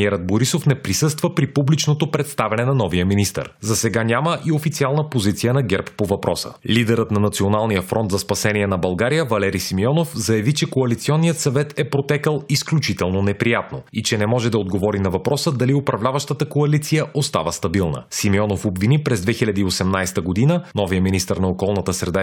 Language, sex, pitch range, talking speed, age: Bulgarian, male, 100-140 Hz, 160 wpm, 30-49